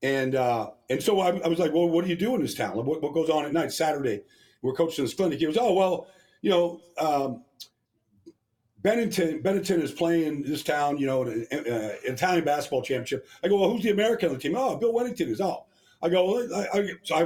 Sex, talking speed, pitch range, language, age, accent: male, 230 wpm, 150-190 Hz, English, 50-69, American